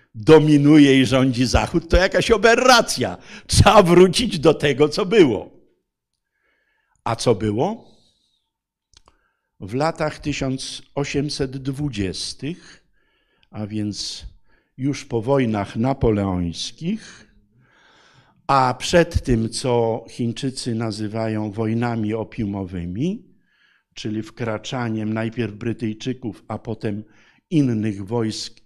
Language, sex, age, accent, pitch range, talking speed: Polish, male, 50-69, native, 110-150 Hz, 85 wpm